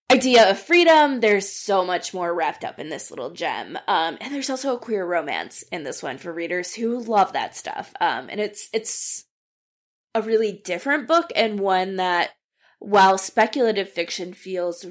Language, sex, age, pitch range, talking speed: English, female, 20-39, 180-250 Hz, 175 wpm